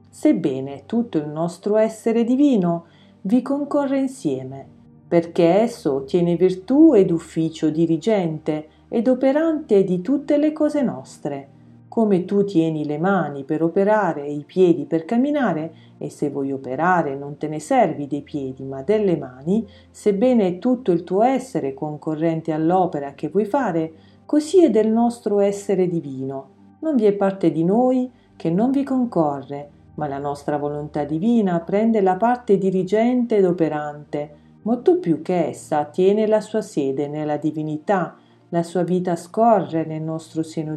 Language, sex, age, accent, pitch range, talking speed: Italian, female, 40-59, native, 155-225 Hz, 150 wpm